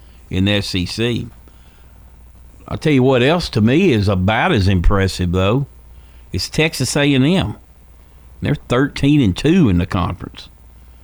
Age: 50-69